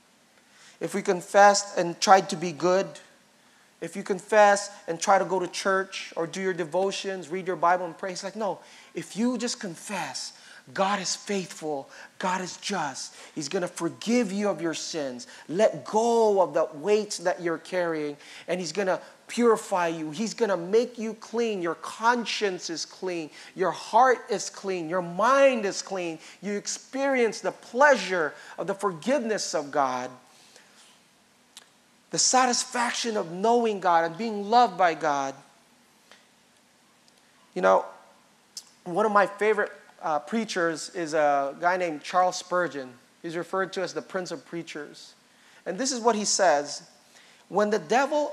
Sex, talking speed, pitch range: male, 160 wpm, 175-220 Hz